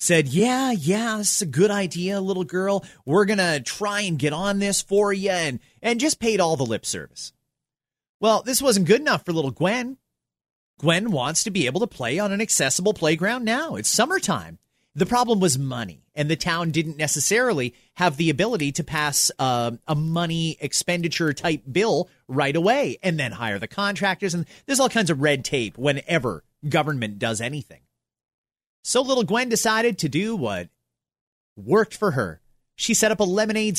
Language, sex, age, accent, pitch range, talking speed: English, male, 30-49, American, 140-200 Hz, 185 wpm